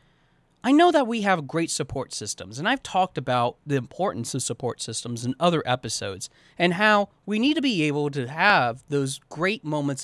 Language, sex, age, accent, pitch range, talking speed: English, male, 30-49, American, 140-225 Hz, 190 wpm